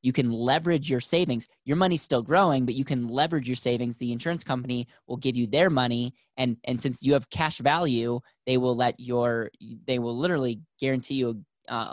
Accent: American